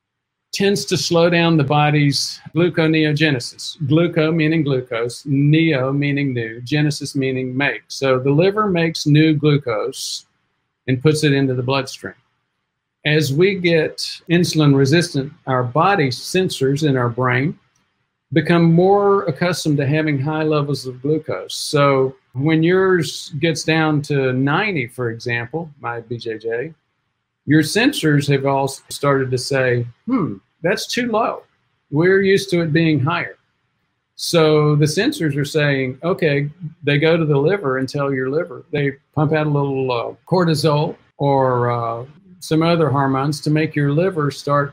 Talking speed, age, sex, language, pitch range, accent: 145 wpm, 50-69, male, English, 135-165 Hz, American